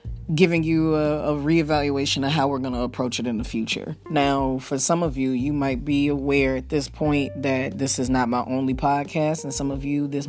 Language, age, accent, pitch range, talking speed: English, 20-39, American, 120-150 Hz, 225 wpm